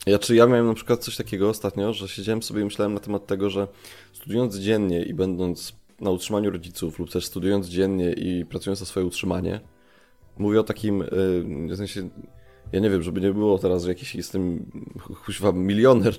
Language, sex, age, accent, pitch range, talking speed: Polish, male, 20-39, native, 90-105 Hz, 190 wpm